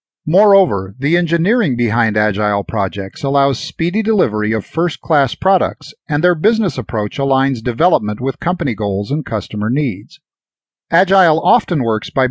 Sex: male